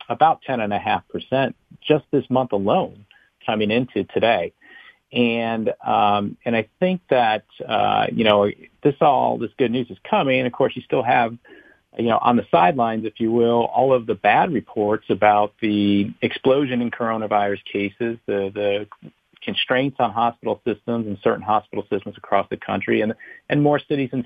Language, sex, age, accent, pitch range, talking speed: English, male, 40-59, American, 100-125 Hz, 180 wpm